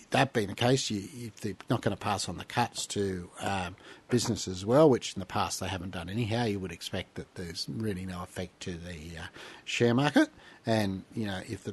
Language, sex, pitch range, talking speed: English, male, 90-110 Hz, 225 wpm